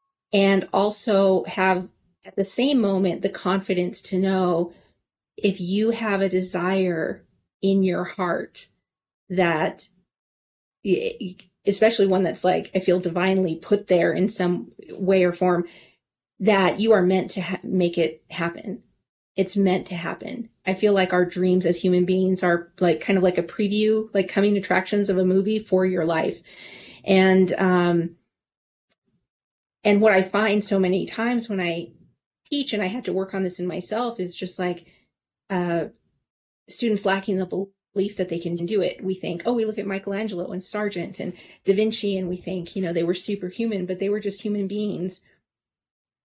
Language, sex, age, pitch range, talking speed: English, female, 30-49, 180-200 Hz, 170 wpm